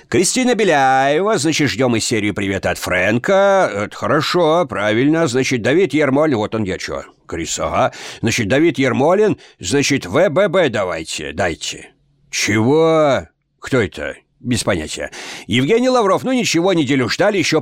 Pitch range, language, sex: 115-160 Hz, Russian, male